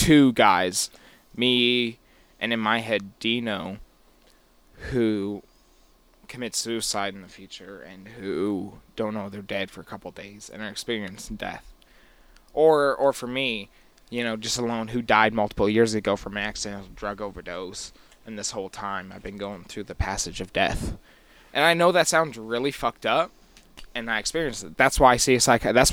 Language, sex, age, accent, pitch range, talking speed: English, male, 20-39, American, 100-120 Hz, 180 wpm